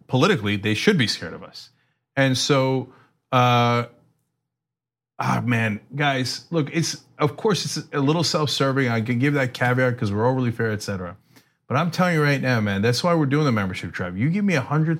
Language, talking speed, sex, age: English, 195 wpm, male, 40-59